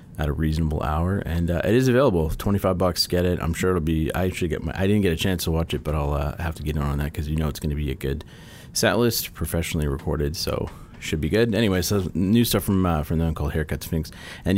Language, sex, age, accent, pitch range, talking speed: English, male, 30-49, American, 75-95 Hz, 285 wpm